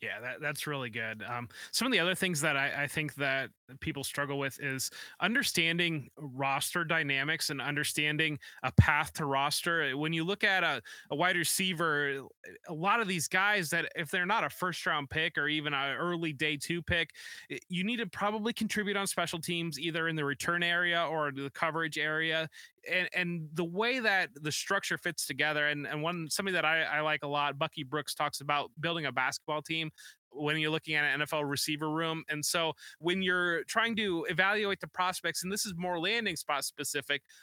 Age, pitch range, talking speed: 20-39, 150-185 Hz, 200 wpm